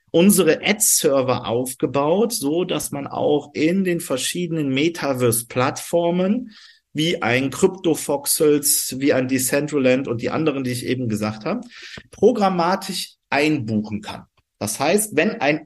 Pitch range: 135-190 Hz